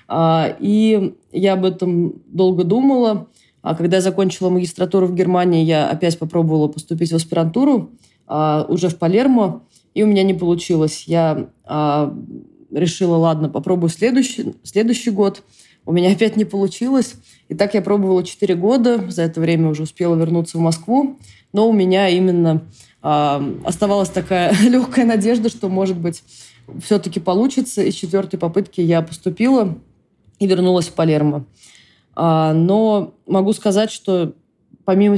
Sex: female